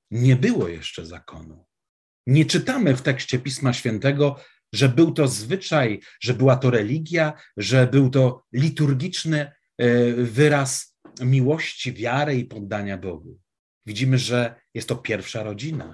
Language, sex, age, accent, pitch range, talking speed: Polish, male, 40-59, native, 110-140 Hz, 130 wpm